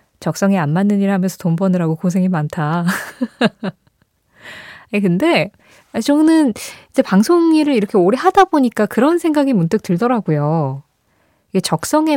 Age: 20-39